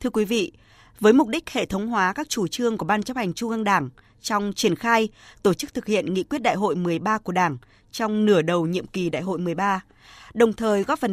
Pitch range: 180-240 Hz